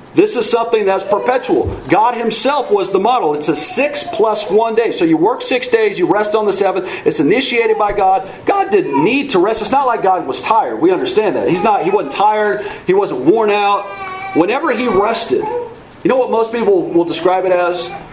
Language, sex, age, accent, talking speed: English, male, 40-59, American, 215 wpm